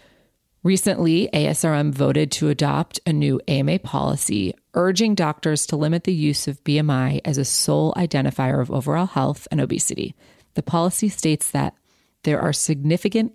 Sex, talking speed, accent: female, 150 wpm, American